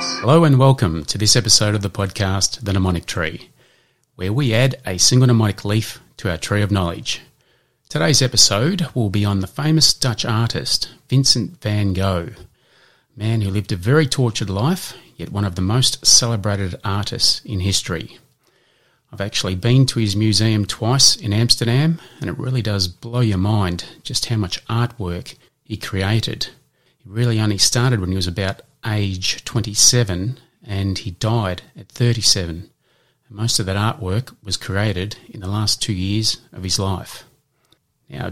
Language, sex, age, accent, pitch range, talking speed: English, male, 30-49, Australian, 95-120 Hz, 165 wpm